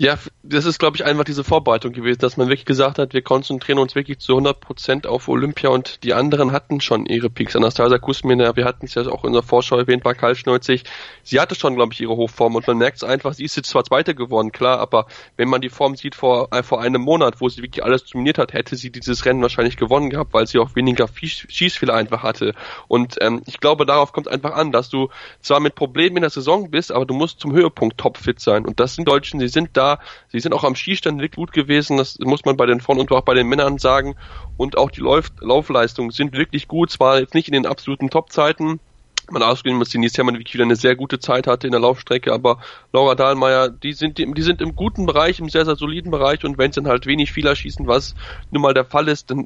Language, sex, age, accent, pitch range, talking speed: German, male, 10-29, German, 125-145 Hz, 250 wpm